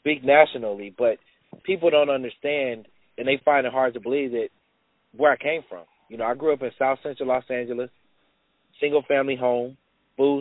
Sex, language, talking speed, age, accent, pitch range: male, English, 180 wpm, 30-49, American, 125-145 Hz